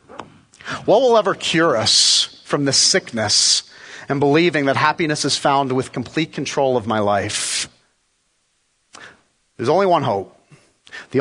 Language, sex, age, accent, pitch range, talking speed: English, male, 40-59, American, 125-165 Hz, 135 wpm